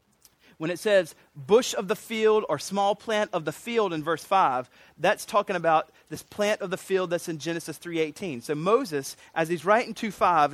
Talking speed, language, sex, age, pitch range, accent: 200 wpm, English, male, 30-49, 160-210 Hz, American